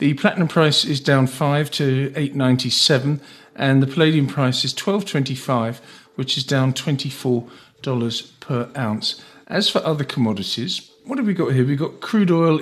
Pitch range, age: 120-145 Hz, 50-69